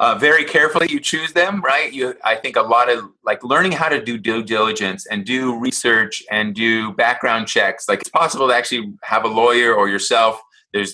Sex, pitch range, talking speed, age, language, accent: male, 115-135 Hz, 210 wpm, 30-49, English, American